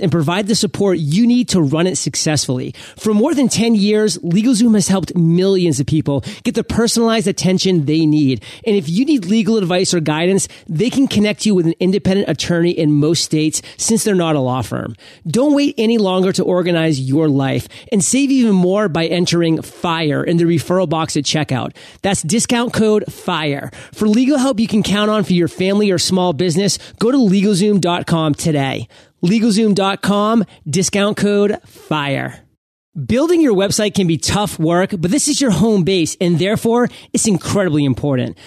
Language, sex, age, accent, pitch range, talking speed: English, male, 30-49, American, 165-215 Hz, 180 wpm